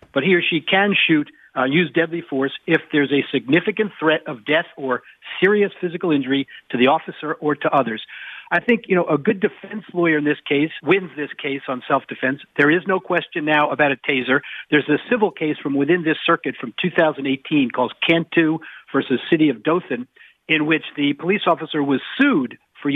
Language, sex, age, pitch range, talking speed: English, male, 50-69, 145-185 Hz, 195 wpm